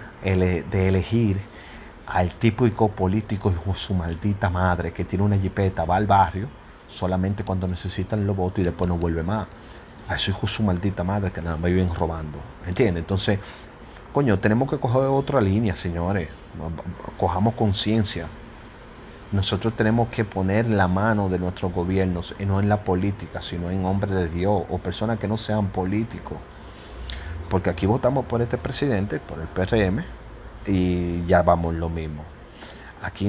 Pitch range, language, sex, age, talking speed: 85-105 Hz, Spanish, male, 30-49, 160 wpm